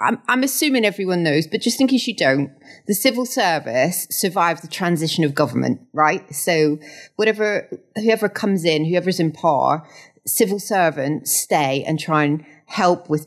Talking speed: 165 wpm